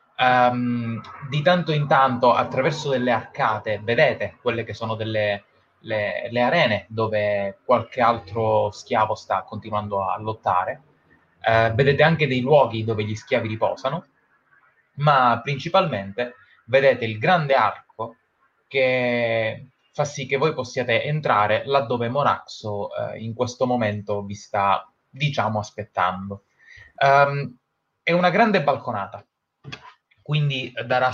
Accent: native